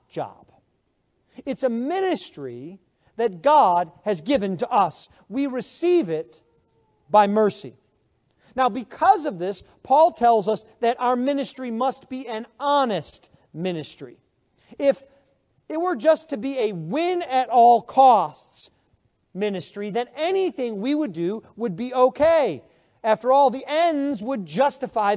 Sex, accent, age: male, American, 40-59